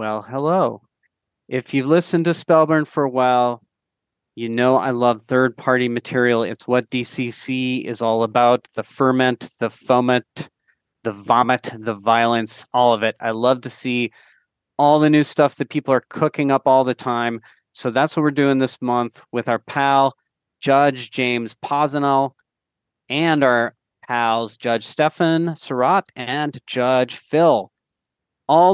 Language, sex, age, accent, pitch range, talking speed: English, male, 30-49, American, 120-155 Hz, 150 wpm